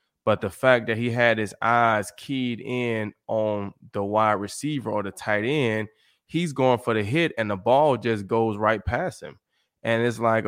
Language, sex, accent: English, male, American